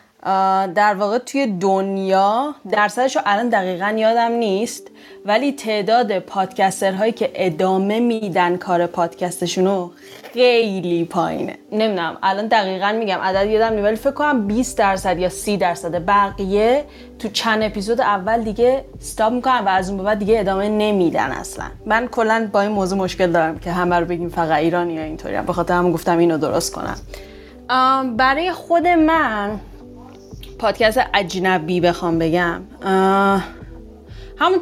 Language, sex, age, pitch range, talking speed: Persian, female, 10-29, 180-220 Hz, 140 wpm